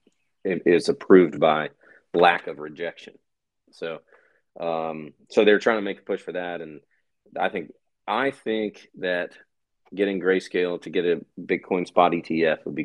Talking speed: 155 wpm